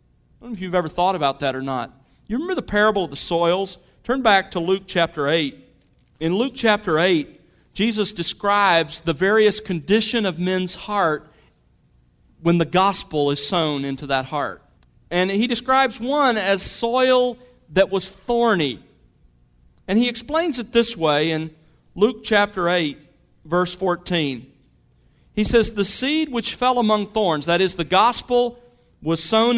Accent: American